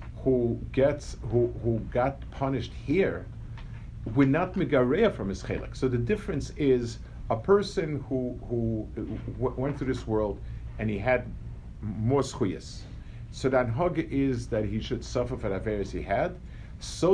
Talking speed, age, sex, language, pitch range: 150 wpm, 50-69, male, English, 105-130 Hz